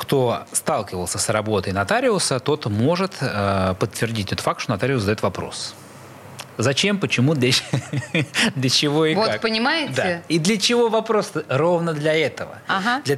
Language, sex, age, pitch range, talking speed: Russian, male, 20-39, 115-160 Hz, 140 wpm